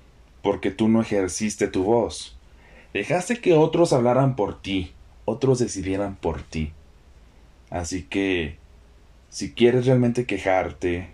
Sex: male